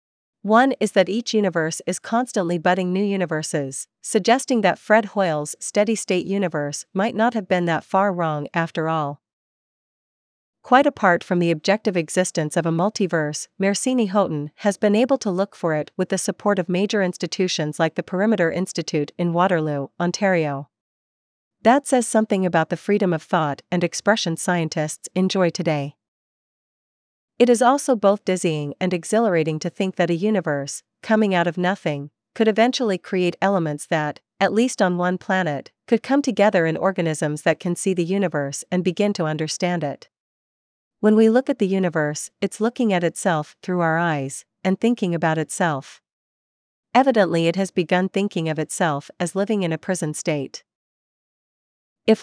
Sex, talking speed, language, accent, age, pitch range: female, 160 wpm, English, American, 40-59, 160-205 Hz